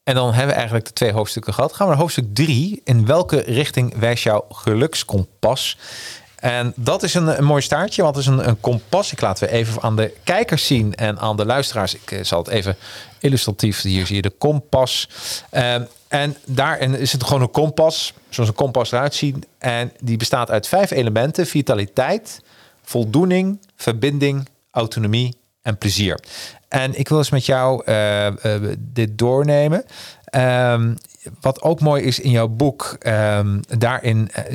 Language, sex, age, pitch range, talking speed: Dutch, male, 40-59, 110-140 Hz, 175 wpm